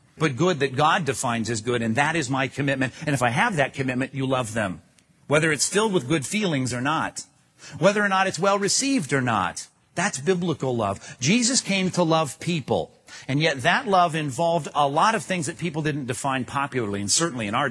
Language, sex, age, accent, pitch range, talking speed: English, male, 40-59, American, 125-160 Hz, 210 wpm